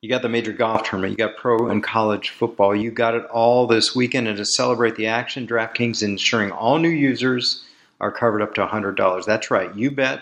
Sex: male